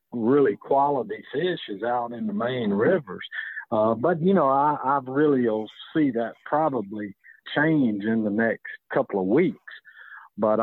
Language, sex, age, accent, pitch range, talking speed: English, male, 50-69, American, 115-140 Hz, 160 wpm